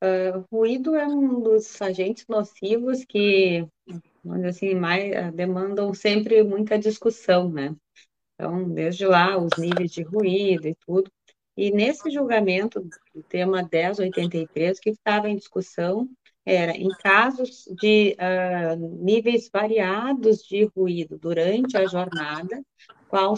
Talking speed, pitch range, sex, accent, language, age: 120 wpm, 185-220 Hz, female, Brazilian, Portuguese, 30-49